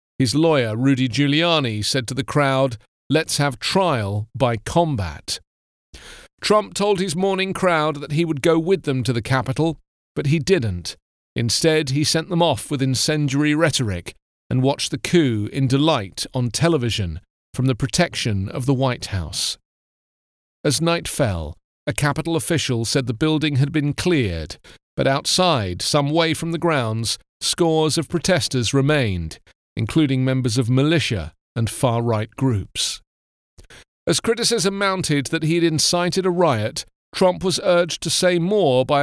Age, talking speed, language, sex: 40-59, 150 wpm, English, male